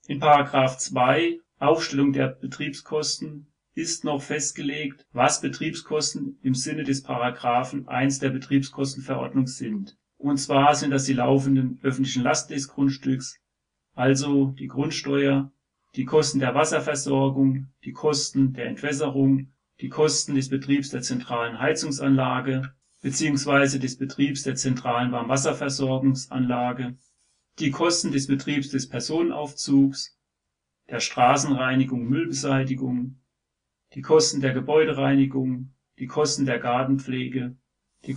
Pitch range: 125-140 Hz